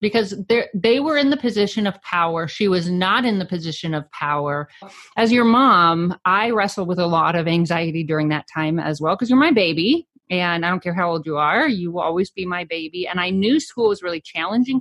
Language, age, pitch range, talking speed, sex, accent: English, 30-49, 170-225 Hz, 225 wpm, female, American